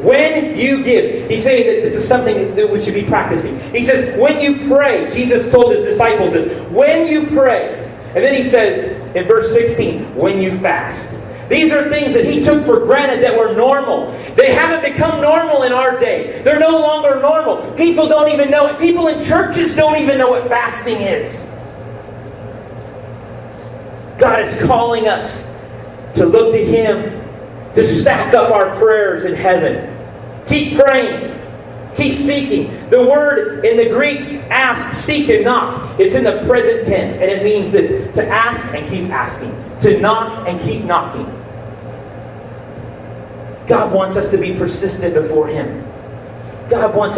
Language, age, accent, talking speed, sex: English, 40-59, American, 165 wpm, male